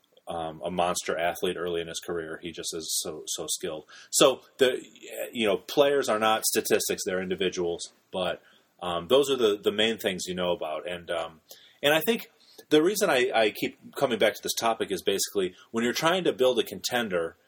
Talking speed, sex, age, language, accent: 205 wpm, male, 30-49, English, American